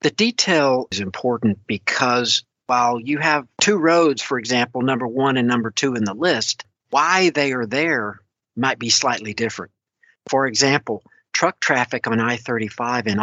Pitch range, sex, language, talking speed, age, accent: 110-125 Hz, male, English, 160 wpm, 50-69, American